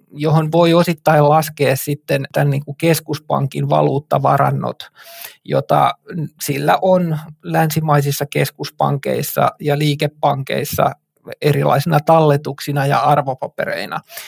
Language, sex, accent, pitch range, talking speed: Finnish, male, native, 140-160 Hz, 80 wpm